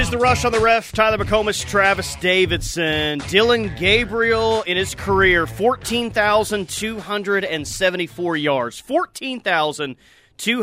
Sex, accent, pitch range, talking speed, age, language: male, American, 150-205 Hz, 140 wpm, 30-49, English